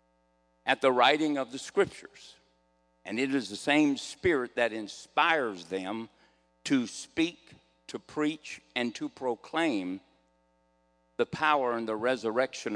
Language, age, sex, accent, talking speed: English, 60-79, male, American, 125 wpm